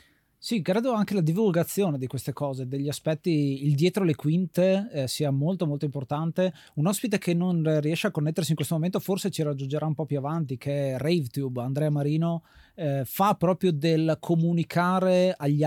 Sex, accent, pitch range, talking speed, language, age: male, native, 135-170 Hz, 180 wpm, Italian, 30-49